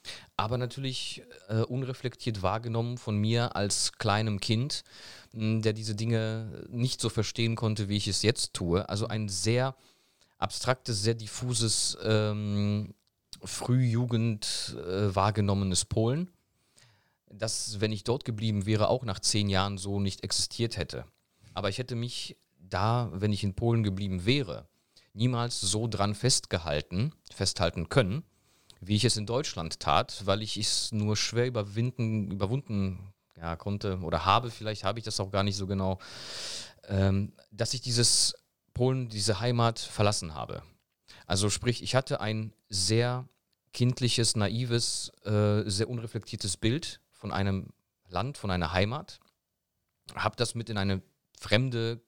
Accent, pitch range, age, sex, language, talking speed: German, 100-120 Hz, 30-49, male, German, 140 wpm